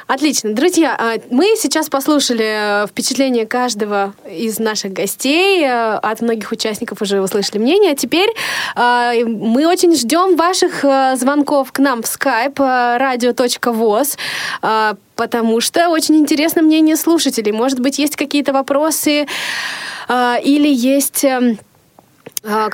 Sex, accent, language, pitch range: female, native, Russian, 220-295 Hz